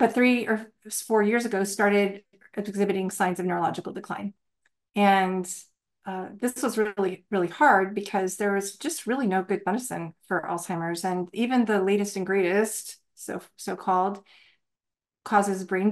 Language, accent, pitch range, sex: English, American, 180-210 Hz, female